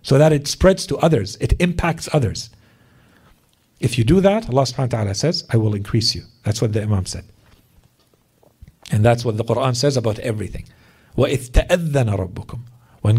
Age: 50-69